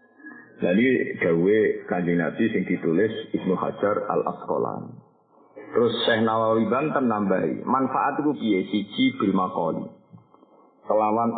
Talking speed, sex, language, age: 110 wpm, male, Indonesian, 50-69